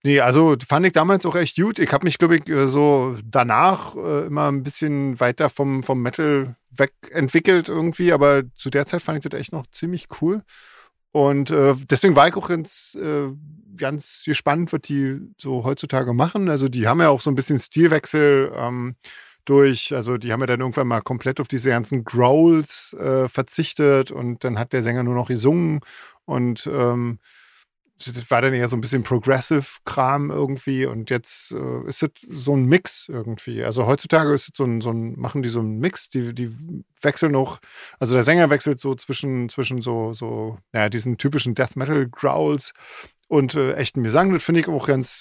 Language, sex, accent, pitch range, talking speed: German, male, German, 125-150 Hz, 190 wpm